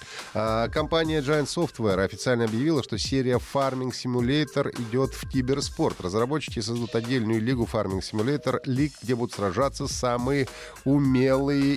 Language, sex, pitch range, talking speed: Russian, male, 95-130 Hz, 120 wpm